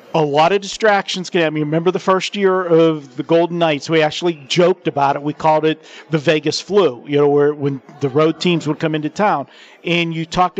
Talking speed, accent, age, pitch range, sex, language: 220 wpm, American, 50-69, 150-185 Hz, male, English